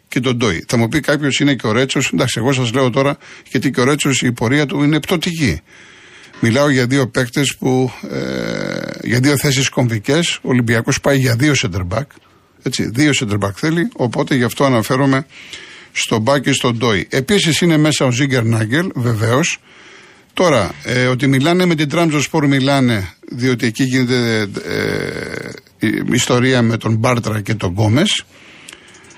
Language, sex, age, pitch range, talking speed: Greek, male, 50-69, 120-155 Hz, 165 wpm